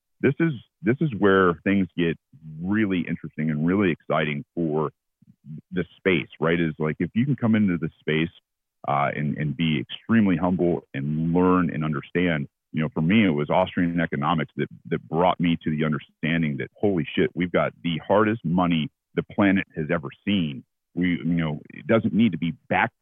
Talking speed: 190 wpm